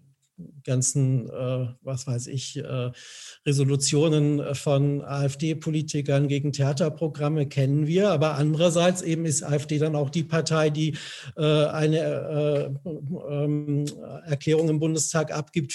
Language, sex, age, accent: German, male, 50-69, German